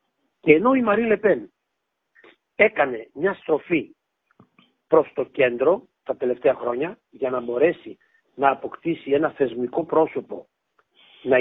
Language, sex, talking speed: Greek, male, 120 wpm